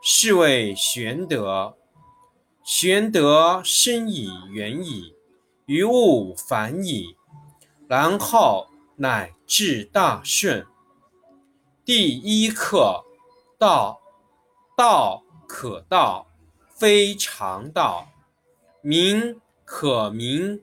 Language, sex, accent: Chinese, male, native